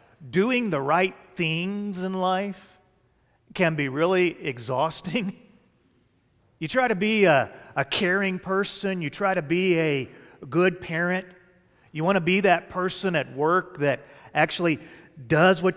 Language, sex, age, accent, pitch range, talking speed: English, male, 40-59, American, 145-190 Hz, 140 wpm